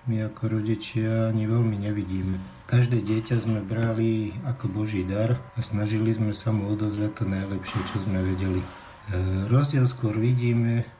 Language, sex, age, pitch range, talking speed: Slovak, male, 50-69, 100-115 Hz, 155 wpm